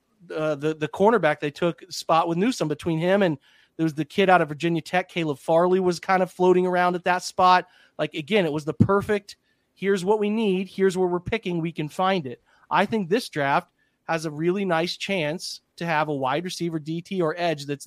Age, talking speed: 30-49, 220 wpm